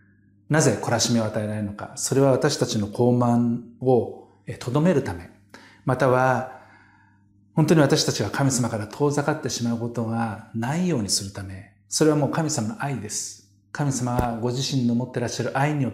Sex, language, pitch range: male, Japanese, 105-130 Hz